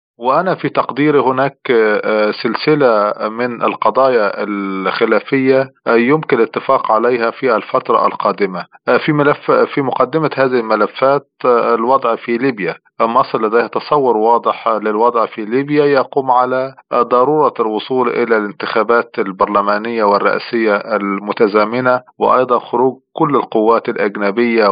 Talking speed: 105 wpm